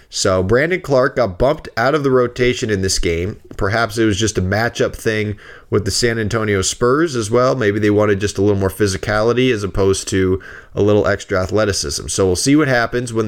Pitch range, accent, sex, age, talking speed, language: 100-125 Hz, American, male, 20-39, 210 wpm, English